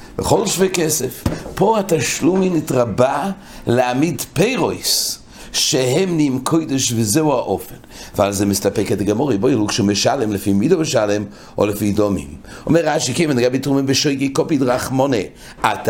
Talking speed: 140 wpm